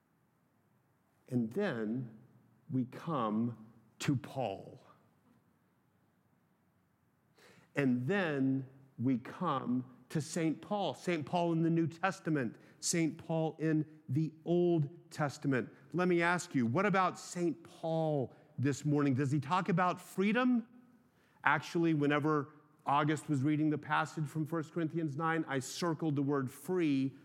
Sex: male